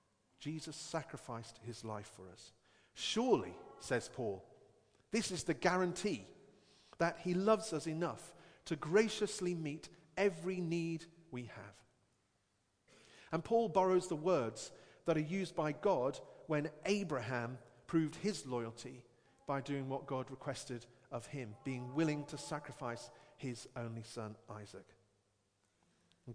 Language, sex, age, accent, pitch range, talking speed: English, male, 40-59, British, 105-155 Hz, 130 wpm